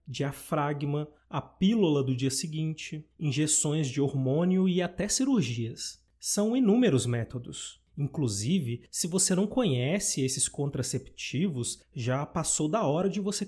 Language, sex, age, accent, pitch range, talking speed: Portuguese, male, 30-49, Brazilian, 140-195 Hz, 125 wpm